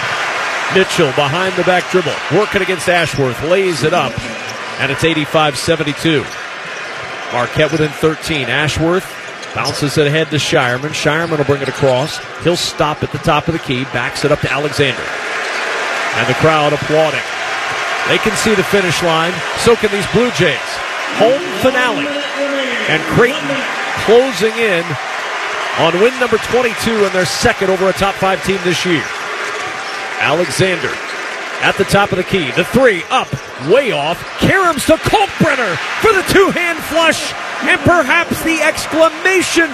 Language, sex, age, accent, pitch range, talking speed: English, male, 40-59, American, 150-220 Hz, 150 wpm